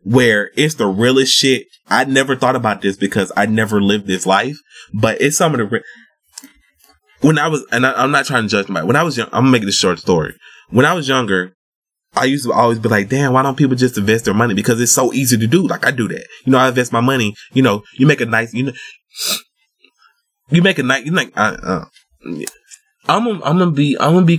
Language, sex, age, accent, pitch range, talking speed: English, male, 20-39, American, 110-160 Hz, 245 wpm